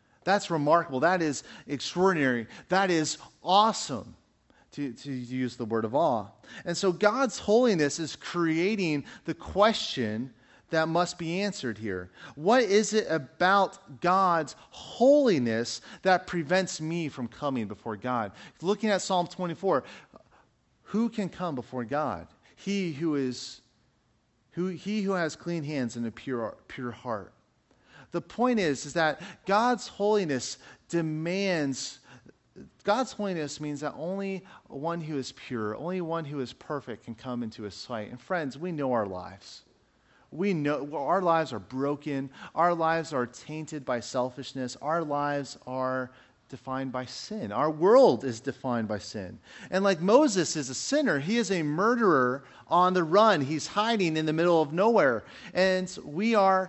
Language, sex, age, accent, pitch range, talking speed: English, male, 40-59, American, 130-185 Hz, 150 wpm